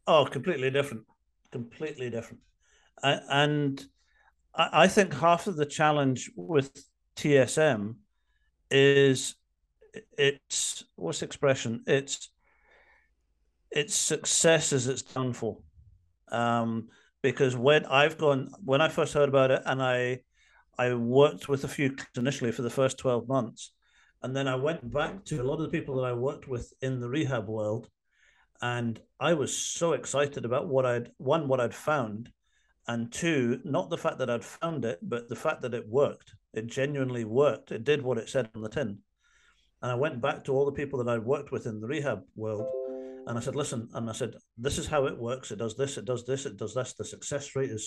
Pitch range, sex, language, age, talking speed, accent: 120-145 Hz, male, English, 50-69, 190 wpm, British